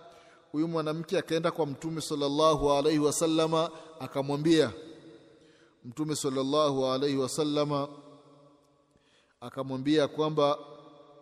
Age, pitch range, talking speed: 30-49, 140-175 Hz, 80 wpm